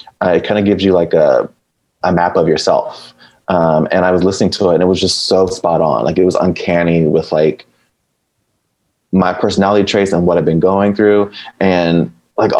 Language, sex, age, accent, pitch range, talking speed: English, male, 20-39, American, 85-100 Hz, 200 wpm